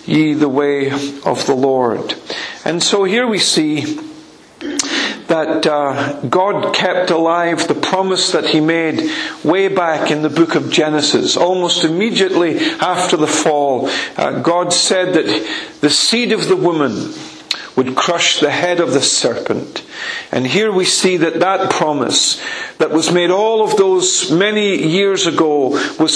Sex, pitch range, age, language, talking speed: male, 140-185 Hz, 50-69, English, 150 wpm